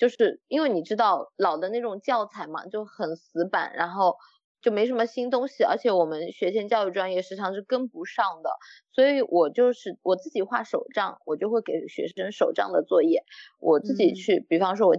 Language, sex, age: Chinese, female, 20-39